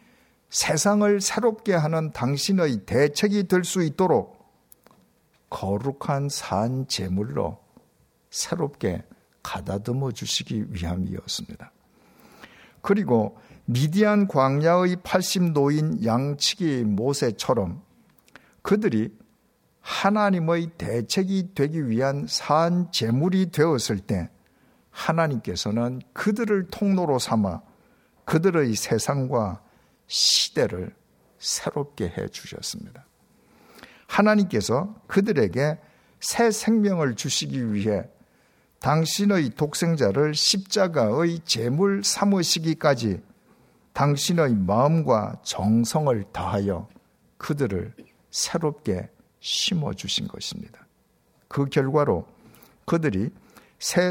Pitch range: 120-185 Hz